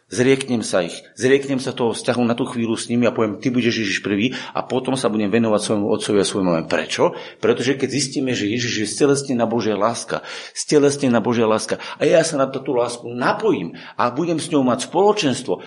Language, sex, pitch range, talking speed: Slovak, male, 120-185 Hz, 215 wpm